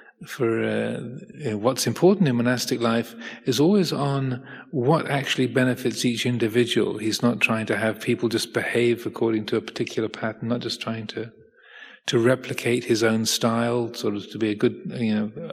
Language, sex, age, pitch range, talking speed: English, male, 40-59, 115-130 Hz, 180 wpm